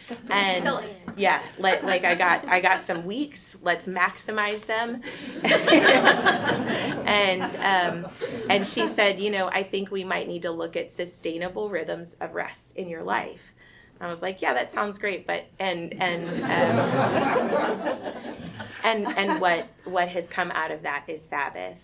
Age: 20-39